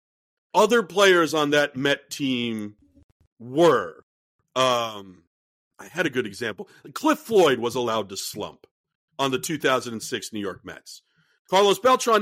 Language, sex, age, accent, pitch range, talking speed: English, male, 50-69, American, 130-185 Hz, 135 wpm